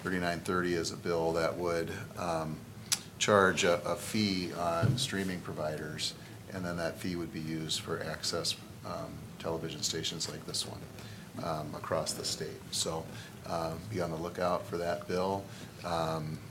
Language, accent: English, American